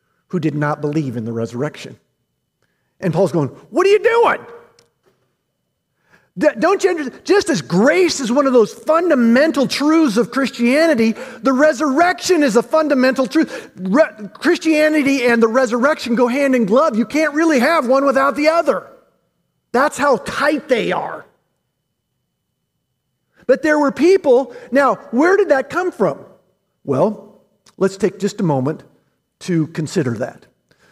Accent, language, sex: American, English, male